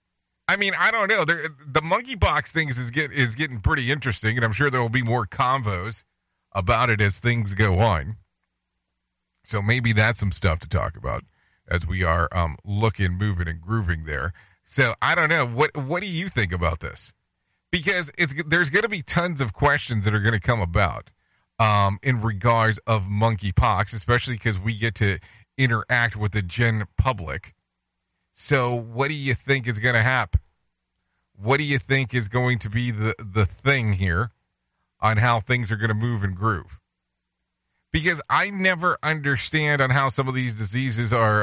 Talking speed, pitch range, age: 185 wpm, 95-130 Hz, 30-49